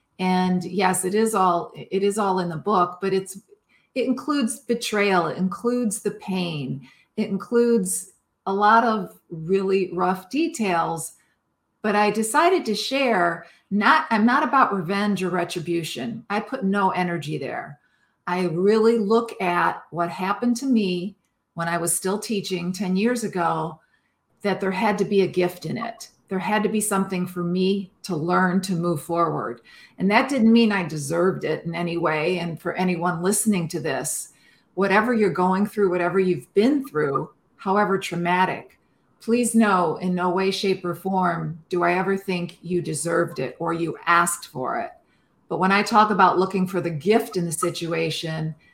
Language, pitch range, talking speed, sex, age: English, 175-210 Hz, 170 wpm, female, 40-59